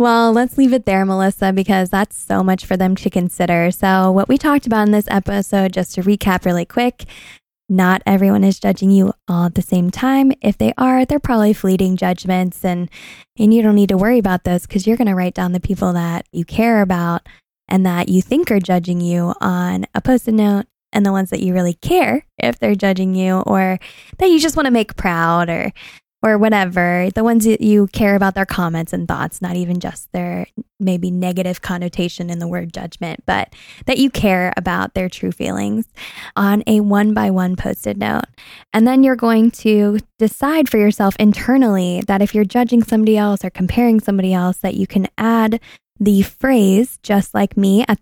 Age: 10-29